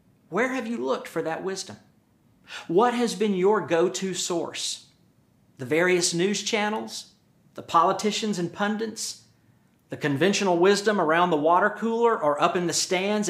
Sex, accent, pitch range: male, American, 155-210 Hz